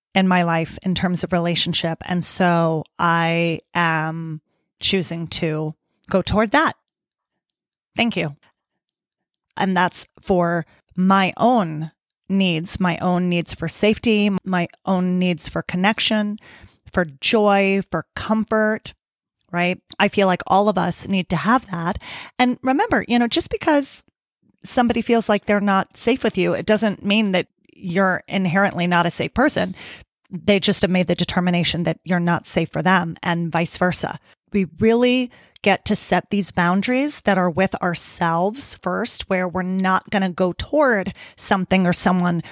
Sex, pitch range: female, 170-205 Hz